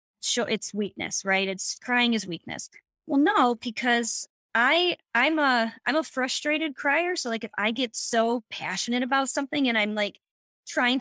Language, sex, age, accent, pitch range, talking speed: English, female, 20-39, American, 220-270 Hz, 170 wpm